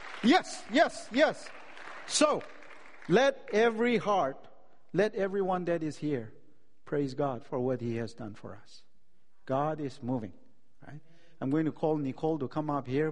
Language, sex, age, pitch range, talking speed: English, male, 50-69, 125-155 Hz, 155 wpm